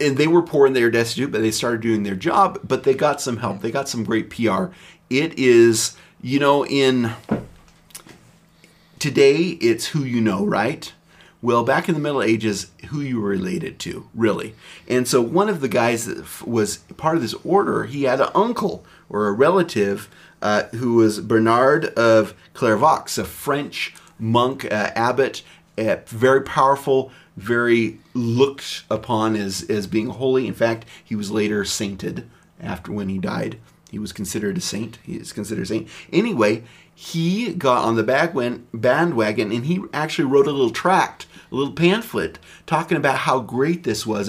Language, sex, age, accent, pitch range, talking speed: English, male, 30-49, American, 110-145 Hz, 175 wpm